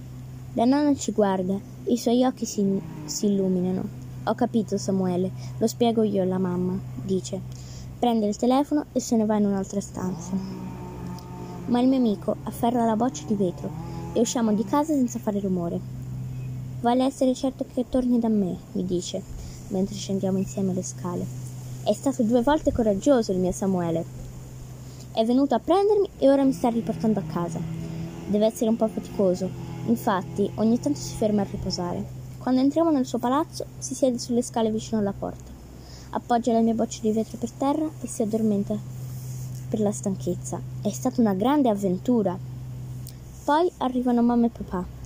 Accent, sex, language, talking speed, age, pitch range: native, female, Italian, 170 wpm, 20-39, 170-240 Hz